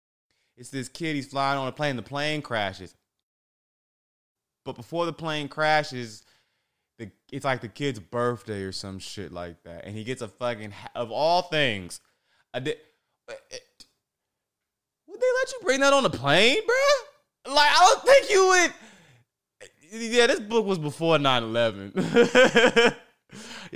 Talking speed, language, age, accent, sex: 140 wpm, English, 20-39, American, male